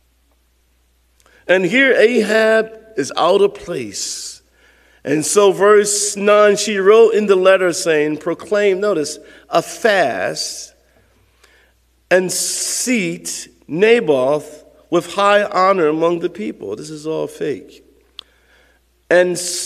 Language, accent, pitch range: English, American, 135-205 Hz